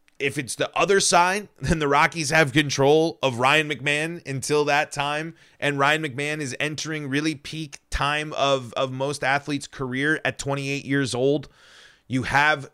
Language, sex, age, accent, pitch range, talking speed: English, male, 30-49, American, 130-165 Hz, 165 wpm